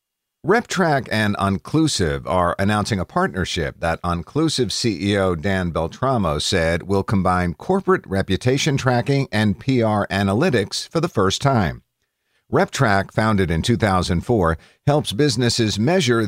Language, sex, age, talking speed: English, male, 50-69, 120 wpm